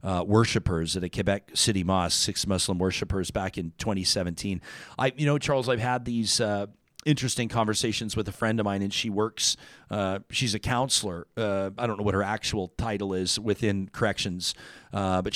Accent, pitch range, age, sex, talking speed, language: American, 100-120 Hz, 40-59, male, 190 wpm, English